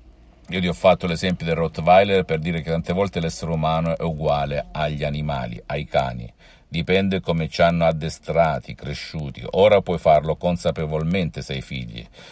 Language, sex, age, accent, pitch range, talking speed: Italian, male, 50-69, native, 75-90 Hz, 160 wpm